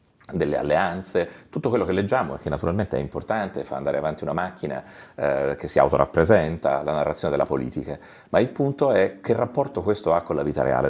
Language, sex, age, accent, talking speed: Italian, male, 40-59, native, 200 wpm